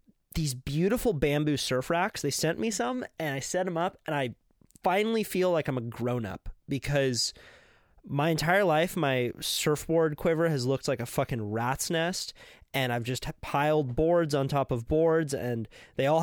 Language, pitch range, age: English, 135-170 Hz, 20-39